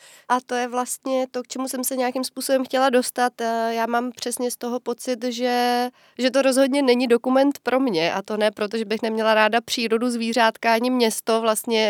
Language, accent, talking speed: Czech, native, 195 wpm